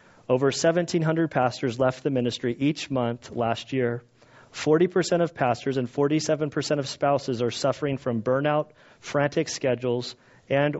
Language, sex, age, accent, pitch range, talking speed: English, male, 40-59, American, 125-150 Hz, 135 wpm